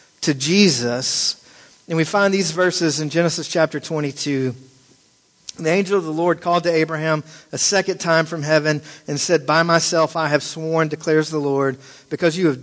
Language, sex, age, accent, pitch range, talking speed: English, male, 40-59, American, 145-170 Hz, 175 wpm